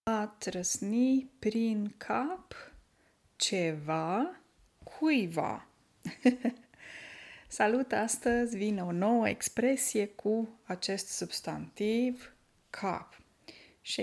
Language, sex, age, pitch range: Romanian, female, 20-39, 195-245 Hz